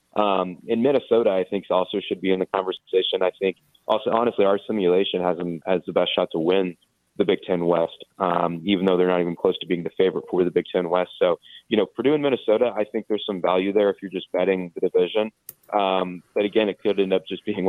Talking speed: 240 wpm